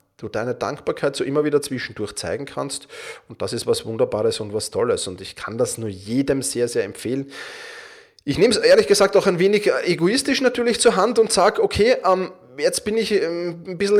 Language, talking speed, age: German, 200 wpm, 20-39